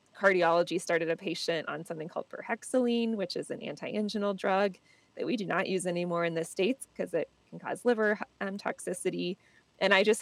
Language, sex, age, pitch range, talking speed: English, female, 20-39, 165-210 Hz, 190 wpm